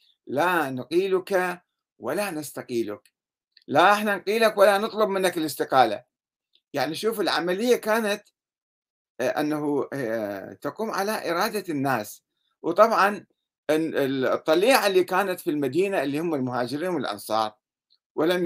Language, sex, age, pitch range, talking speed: Arabic, male, 50-69, 135-190 Hz, 100 wpm